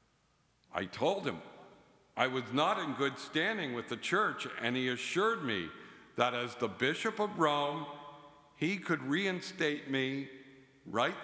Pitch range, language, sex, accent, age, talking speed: 130-165 Hz, English, male, American, 60-79, 145 wpm